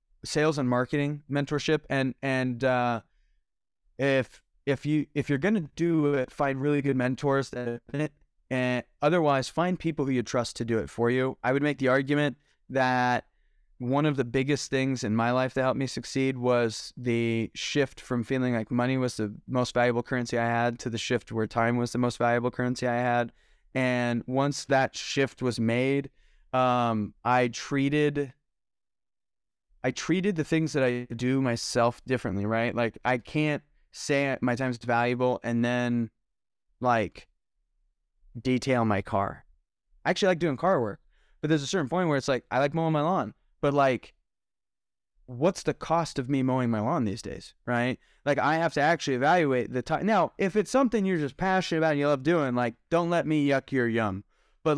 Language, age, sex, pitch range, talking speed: English, 20-39, male, 120-150 Hz, 185 wpm